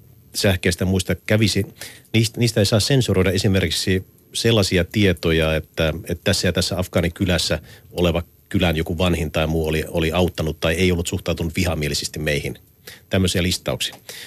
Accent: native